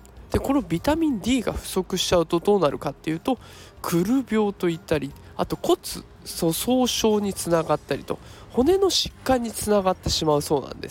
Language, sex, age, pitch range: Japanese, male, 20-39, 150-215 Hz